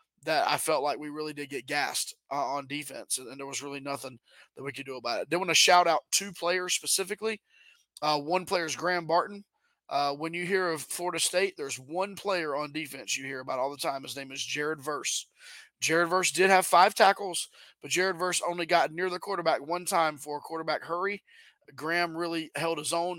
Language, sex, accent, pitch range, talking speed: English, male, American, 155-185 Hz, 215 wpm